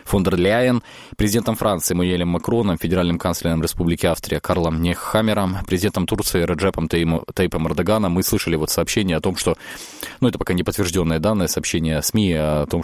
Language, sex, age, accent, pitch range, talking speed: Russian, male, 20-39, native, 85-100 Hz, 155 wpm